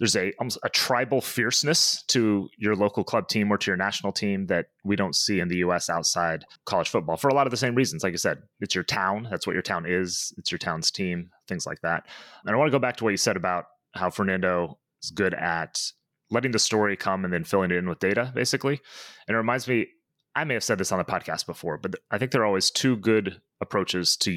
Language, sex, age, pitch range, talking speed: English, male, 30-49, 95-125 Hz, 250 wpm